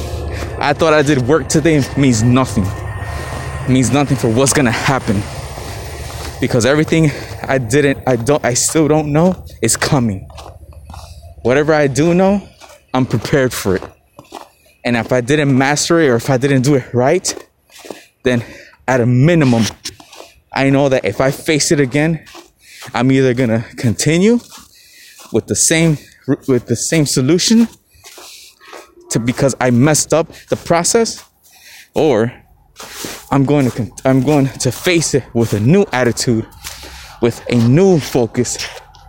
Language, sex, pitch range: English, male, 110-145 Hz